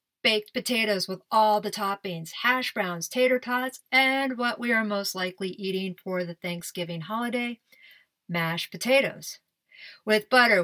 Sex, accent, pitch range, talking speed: female, American, 190-245 Hz, 140 wpm